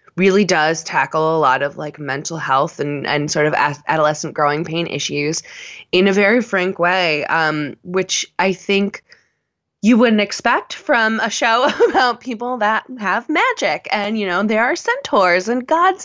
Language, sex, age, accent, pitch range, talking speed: English, female, 20-39, American, 150-200 Hz, 170 wpm